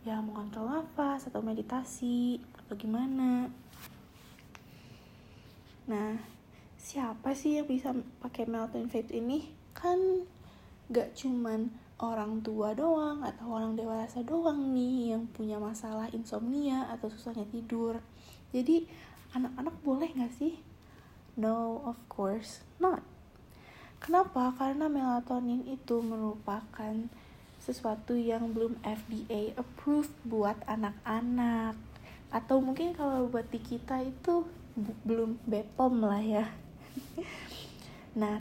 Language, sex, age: Indonesian, female, 20-39